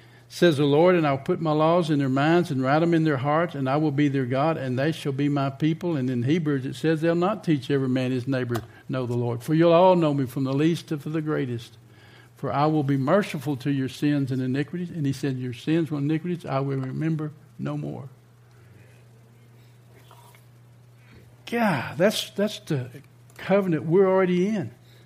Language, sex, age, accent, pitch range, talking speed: English, male, 60-79, American, 120-165 Hz, 205 wpm